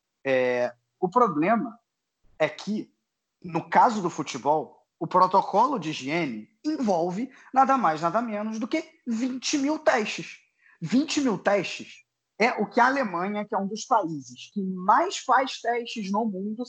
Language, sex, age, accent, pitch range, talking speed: Portuguese, male, 20-39, Brazilian, 160-255 Hz, 150 wpm